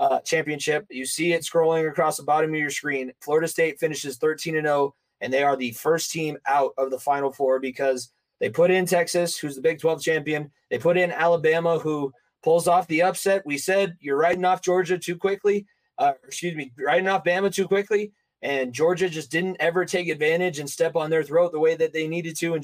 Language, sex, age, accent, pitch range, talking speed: English, male, 20-39, American, 150-180 Hz, 215 wpm